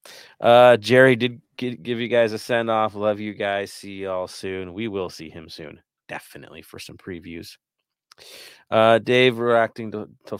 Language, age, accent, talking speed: English, 30-49, American, 165 wpm